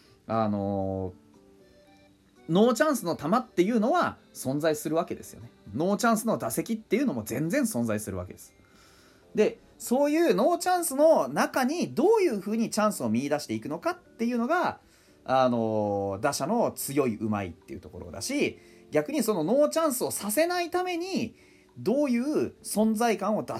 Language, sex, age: Japanese, male, 40-59